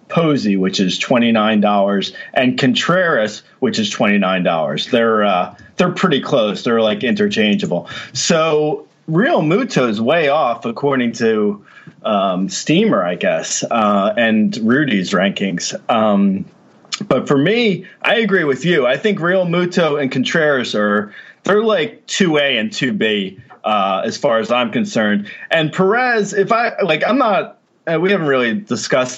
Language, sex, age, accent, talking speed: English, male, 30-49, American, 160 wpm